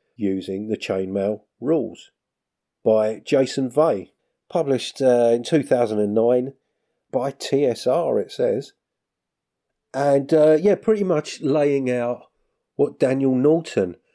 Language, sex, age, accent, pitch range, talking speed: English, male, 40-59, British, 95-125 Hz, 105 wpm